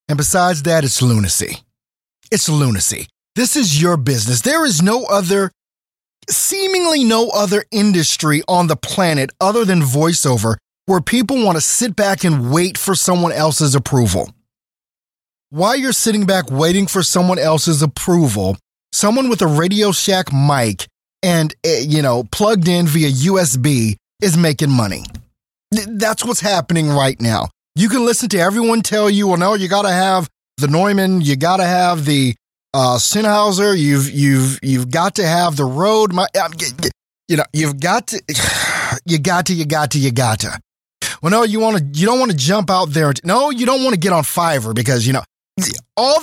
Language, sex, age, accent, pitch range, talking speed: English, male, 30-49, American, 140-200 Hz, 175 wpm